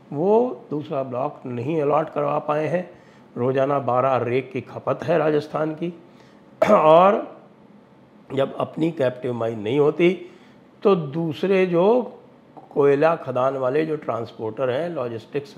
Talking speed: 125 wpm